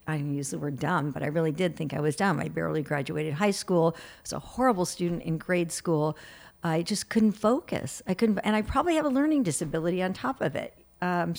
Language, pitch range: English, 165-205 Hz